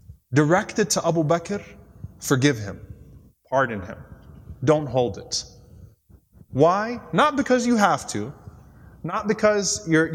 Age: 20-39